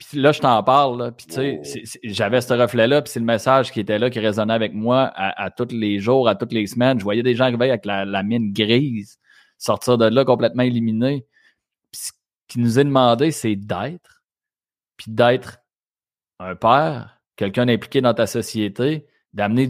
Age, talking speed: 30-49, 205 wpm